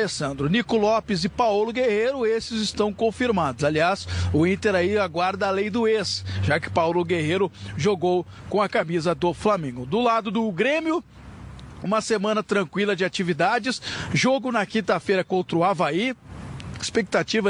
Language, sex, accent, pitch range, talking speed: Portuguese, male, Brazilian, 180-230 Hz, 150 wpm